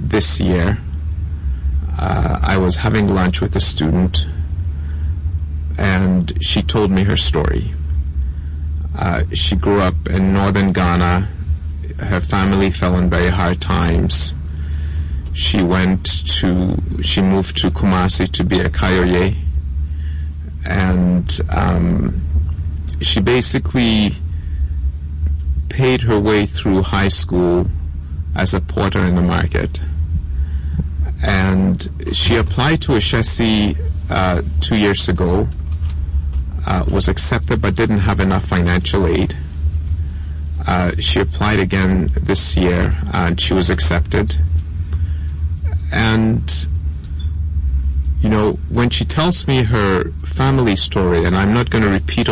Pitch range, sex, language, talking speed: 75-95 Hz, male, English, 115 wpm